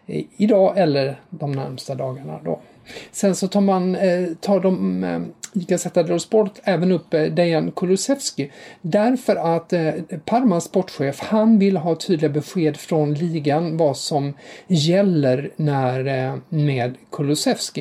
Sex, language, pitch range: male, English, 140-185 Hz